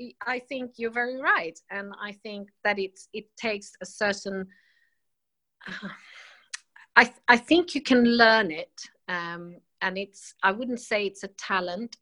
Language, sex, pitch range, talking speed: English, female, 165-210 Hz, 160 wpm